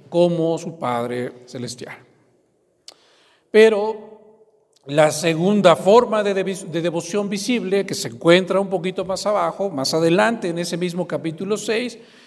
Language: Spanish